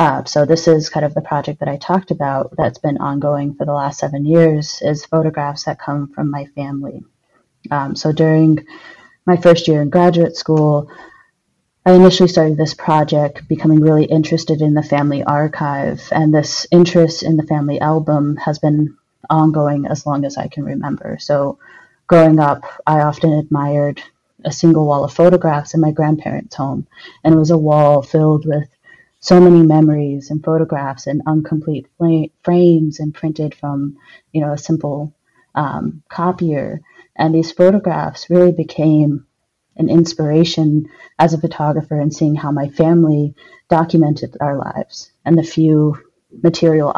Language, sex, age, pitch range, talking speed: English, female, 30-49, 145-165 Hz, 160 wpm